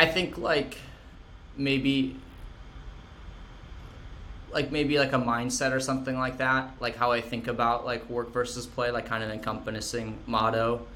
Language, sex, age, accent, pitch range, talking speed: English, male, 20-39, American, 105-130 Hz, 155 wpm